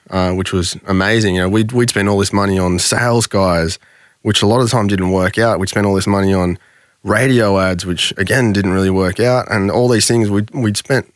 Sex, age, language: male, 20-39, English